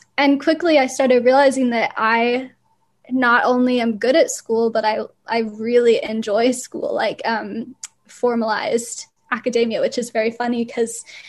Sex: female